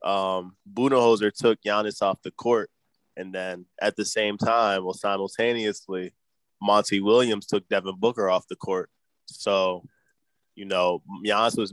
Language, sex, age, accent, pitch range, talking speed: English, male, 20-39, American, 95-115 Hz, 145 wpm